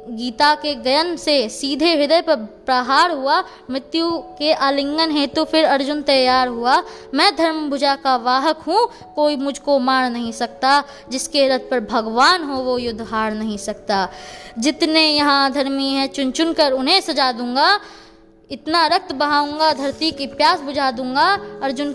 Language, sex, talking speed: Hindi, female, 160 wpm